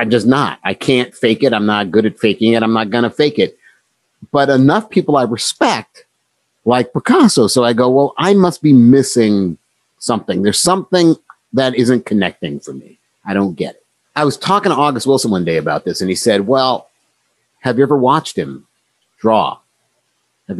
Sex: male